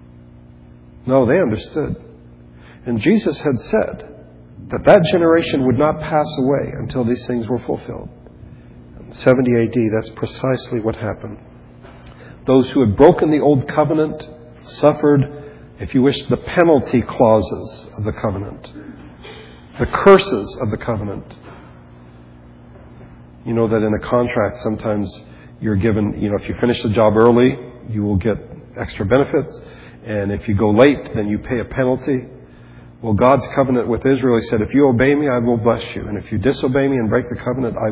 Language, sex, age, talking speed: English, male, 50-69, 165 wpm